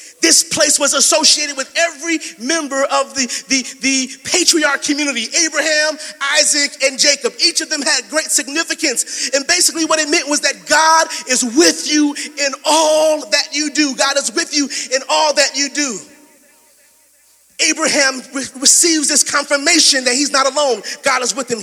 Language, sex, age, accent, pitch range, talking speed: English, male, 30-49, American, 285-330 Hz, 165 wpm